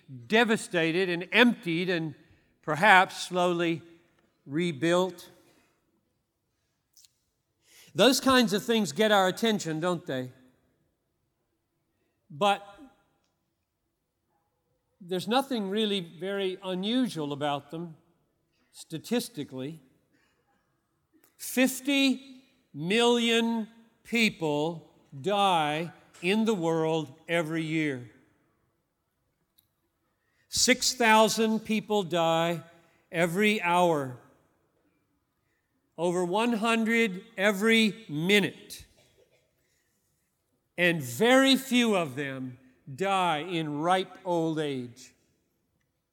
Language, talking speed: English, 70 wpm